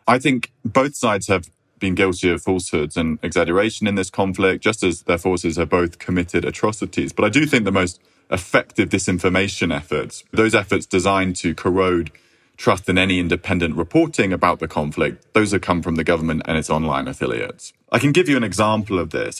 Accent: British